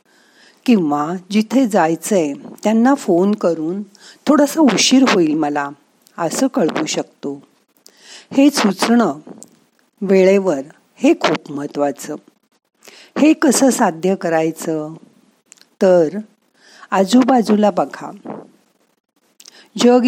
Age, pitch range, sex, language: 50-69, 165-235 Hz, female, Marathi